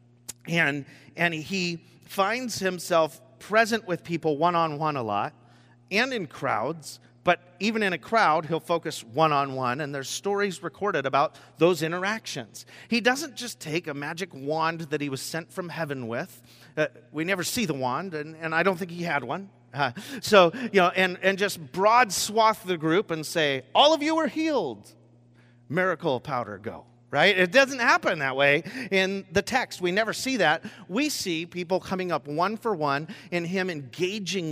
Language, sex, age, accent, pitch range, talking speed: English, male, 40-59, American, 130-195 Hz, 175 wpm